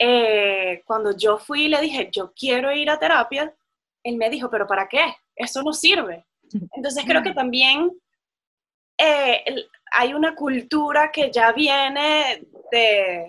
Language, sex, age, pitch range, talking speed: Spanish, female, 20-39, 220-300 Hz, 150 wpm